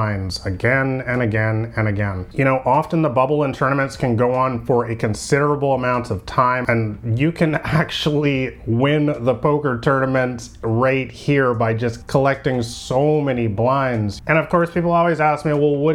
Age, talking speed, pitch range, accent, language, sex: 30-49, 175 wpm, 120-150 Hz, American, English, male